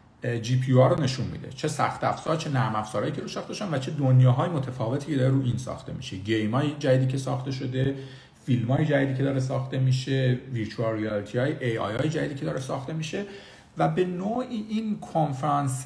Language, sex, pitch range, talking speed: Persian, male, 120-145 Hz, 200 wpm